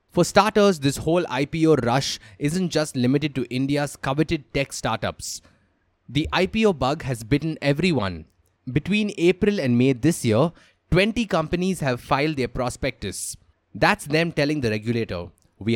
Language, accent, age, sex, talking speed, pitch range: English, Indian, 20-39, male, 145 wpm, 115-160 Hz